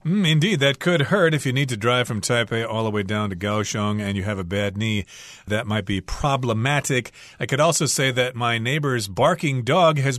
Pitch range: 110-150 Hz